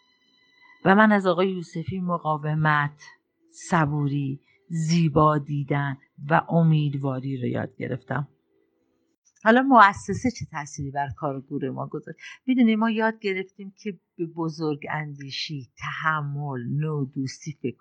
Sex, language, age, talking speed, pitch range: female, Persian, 50-69, 115 wpm, 140-190 Hz